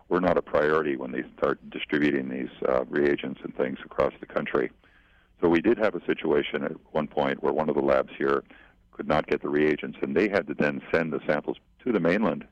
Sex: male